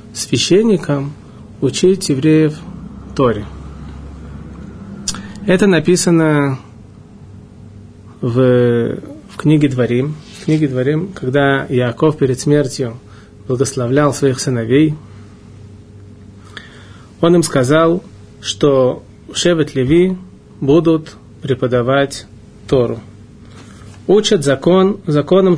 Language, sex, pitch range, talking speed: Russian, male, 110-150 Hz, 75 wpm